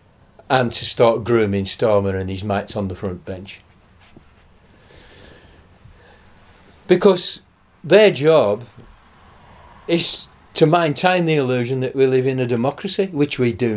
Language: English